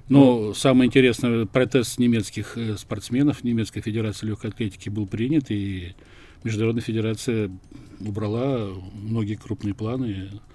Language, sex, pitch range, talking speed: Russian, male, 105-130 Hz, 110 wpm